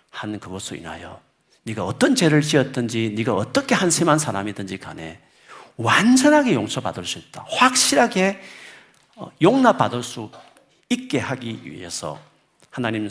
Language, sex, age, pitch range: Korean, male, 40-59, 105-160 Hz